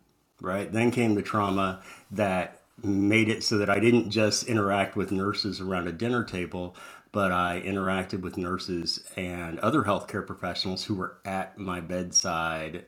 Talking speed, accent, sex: 160 wpm, American, male